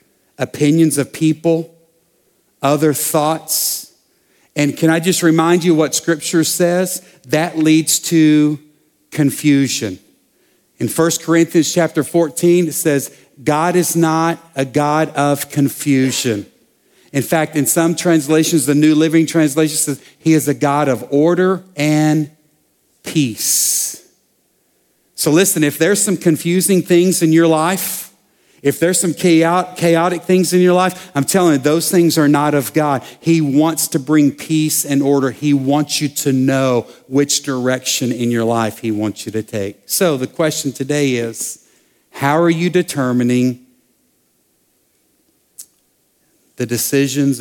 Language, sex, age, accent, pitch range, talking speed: English, male, 50-69, American, 135-165 Hz, 140 wpm